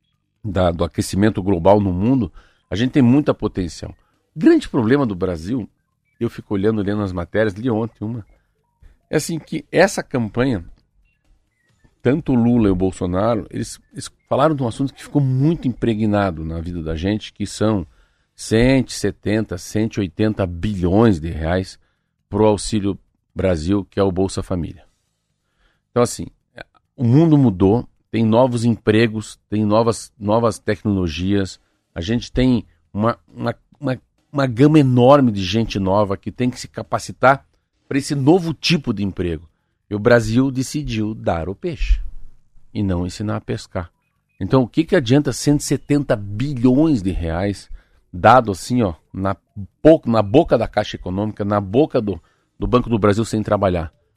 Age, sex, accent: 50-69, male, Brazilian